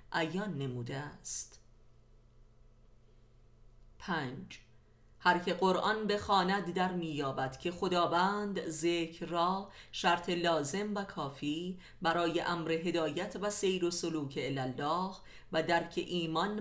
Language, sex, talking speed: Persian, female, 100 wpm